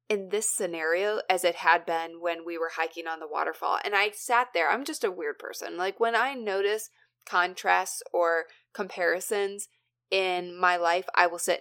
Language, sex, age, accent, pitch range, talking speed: English, female, 20-39, American, 175-240 Hz, 185 wpm